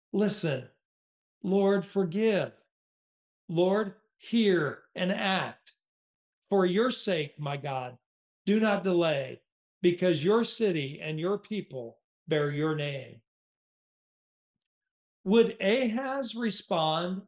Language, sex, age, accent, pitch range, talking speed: English, male, 50-69, American, 160-210 Hz, 95 wpm